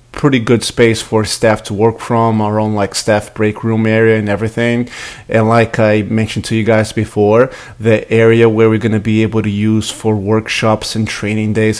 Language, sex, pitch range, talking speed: English, male, 110-120 Hz, 205 wpm